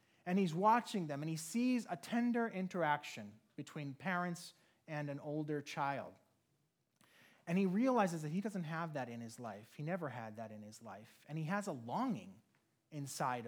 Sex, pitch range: male, 175-250 Hz